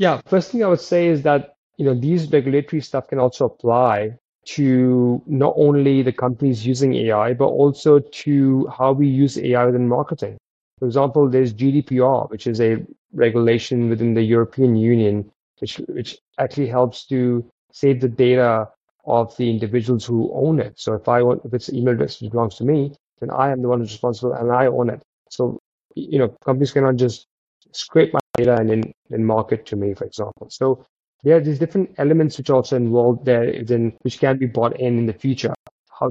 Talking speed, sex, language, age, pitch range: 200 wpm, male, English, 30-49, 120-135 Hz